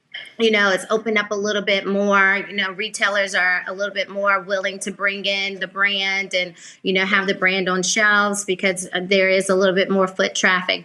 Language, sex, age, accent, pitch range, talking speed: English, female, 30-49, American, 190-215 Hz, 220 wpm